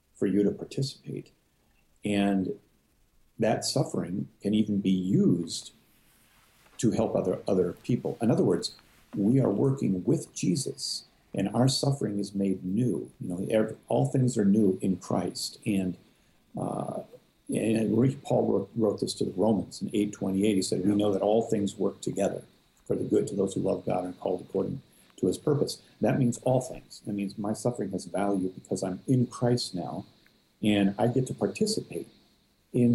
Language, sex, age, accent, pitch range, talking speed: English, male, 50-69, American, 100-120 Hz, 175 wpm